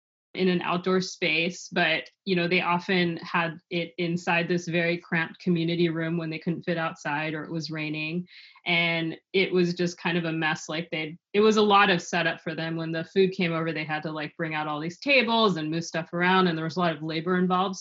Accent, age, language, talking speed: American, 30-49, English, 235 wpm